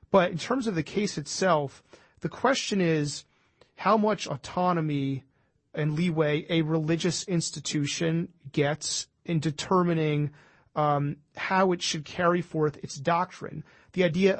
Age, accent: 30-49, American